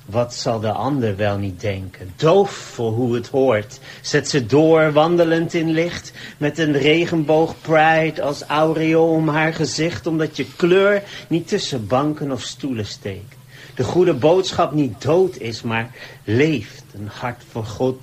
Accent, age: Dutch, 40-59